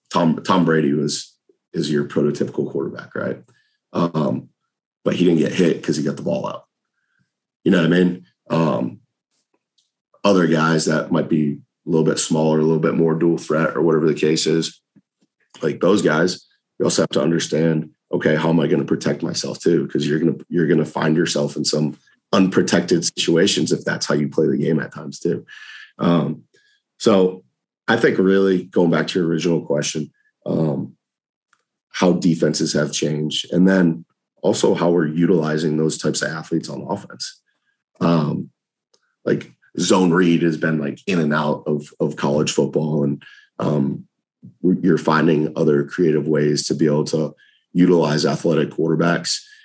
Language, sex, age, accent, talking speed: English, male, 30-49, American, 175 wpm